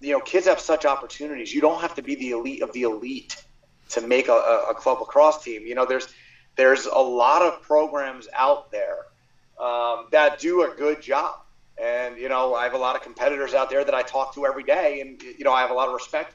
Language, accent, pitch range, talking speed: English, American, 120-170 Hz, 240 wpm